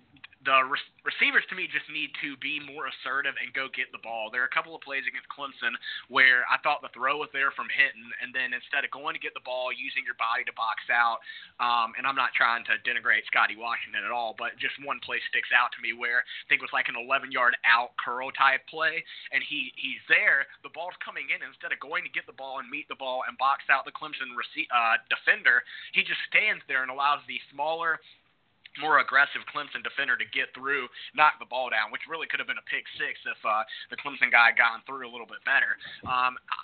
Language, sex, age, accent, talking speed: English, male, 20-39, American, 235 wpm